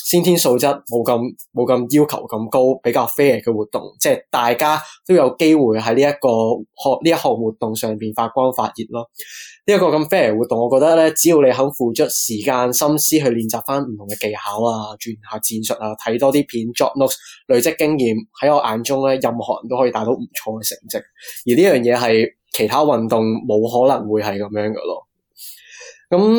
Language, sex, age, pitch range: Chinese, male, 20-39, 110-150 Hz